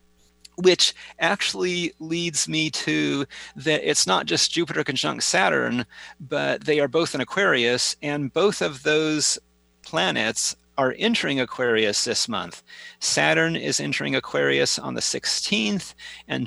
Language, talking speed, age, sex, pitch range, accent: English, 130 wpm, 40-59, male, 105-160 Hz, American